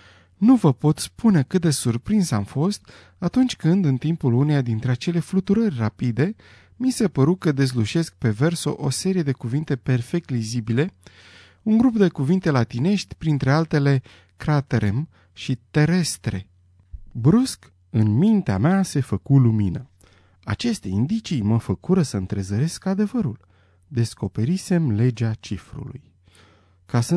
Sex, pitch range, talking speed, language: male, 105-170 Hz, 135 wpm, Romanian